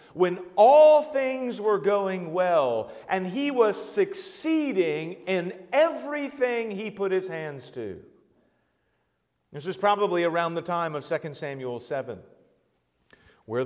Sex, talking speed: male, 125 wpm